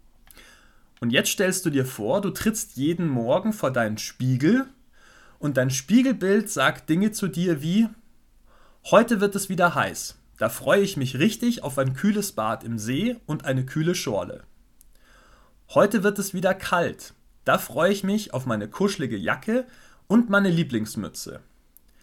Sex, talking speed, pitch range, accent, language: male, 155 wpm, 130-200 Hz, German, German